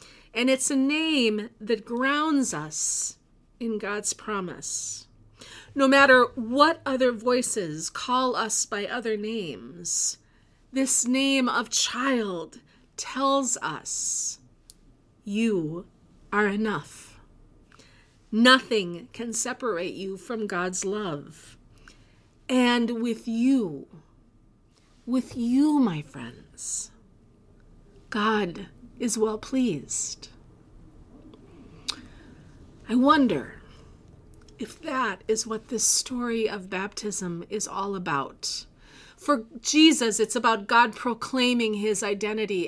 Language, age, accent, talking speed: English, 40-59, American, 95 wpm